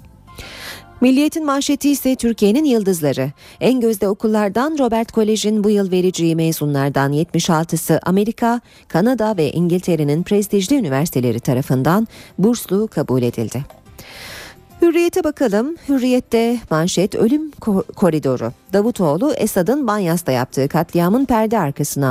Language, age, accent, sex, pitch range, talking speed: Turkish, 40-59, native, female, 150-225 Hz, 105 wpm